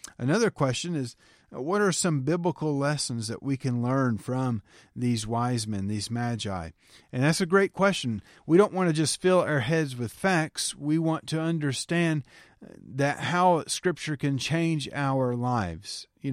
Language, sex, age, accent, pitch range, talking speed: English, male, 40-59, American, 125-160 Hz, 165 wpm